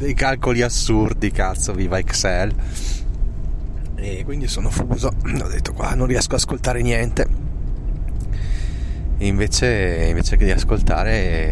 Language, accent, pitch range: Italian, native, 80-100 Hz